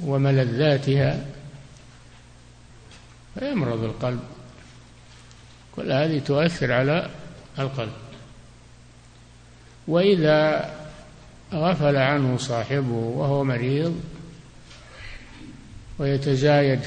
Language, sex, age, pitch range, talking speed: Arabic, male, 60-79, 110-140 Hz, 55 wpm